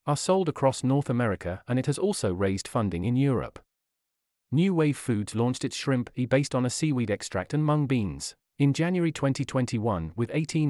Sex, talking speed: male, 170 wpm